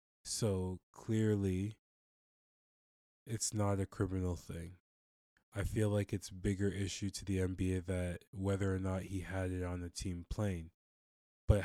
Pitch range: 90-105 Hz